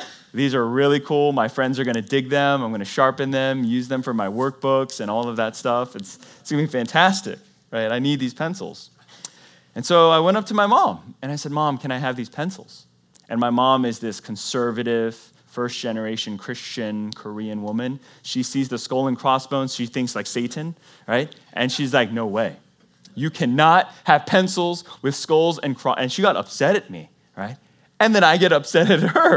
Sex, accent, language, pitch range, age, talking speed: male, American, English, 115-145 Hz, 20-39, 210 wpm